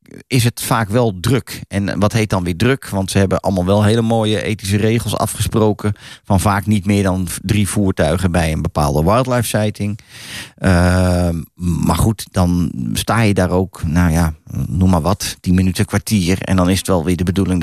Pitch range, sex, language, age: 90-115 Hz, male, Dutch, 40-59